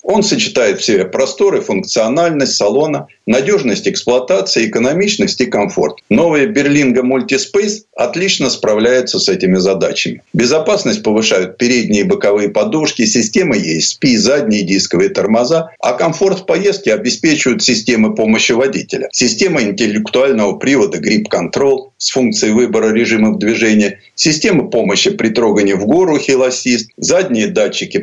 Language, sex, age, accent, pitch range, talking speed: Russian, male, 50-69, native, 105-160 Hz, 125 wpm